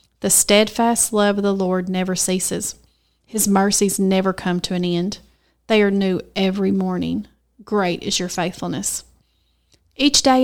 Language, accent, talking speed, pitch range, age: English, American, 150 wpm, 175-210 Hz, 30-49